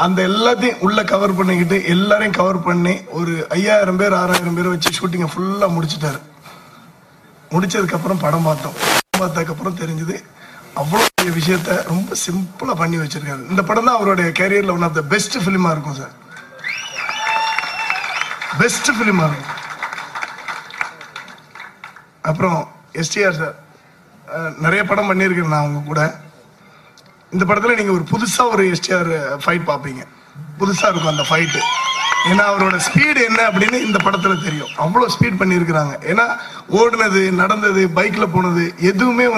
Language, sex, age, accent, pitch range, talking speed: Tamil, male, 30-49, native, 165-200 Hz, 100 wpm